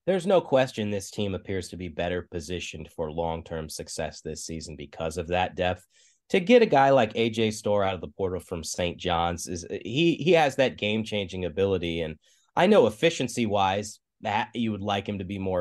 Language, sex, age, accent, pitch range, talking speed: English, male, 30-49, American, 90-120 Hz, 210 wpm